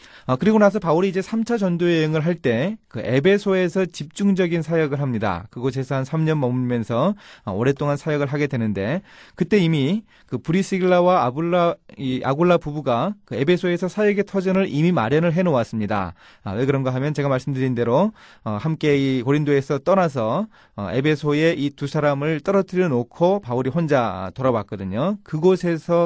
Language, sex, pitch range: Korean, male, 120-175 Hz